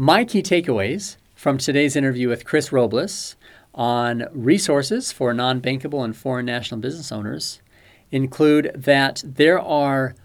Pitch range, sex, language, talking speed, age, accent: 120-155 Hz, male, English, 130 wpm, 40-59, American